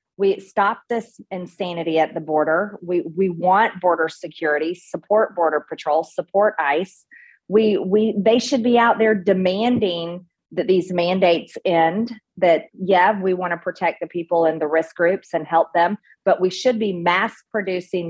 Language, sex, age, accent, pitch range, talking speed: English, female, 40-59, American, 175-215 Hz, 165 wpm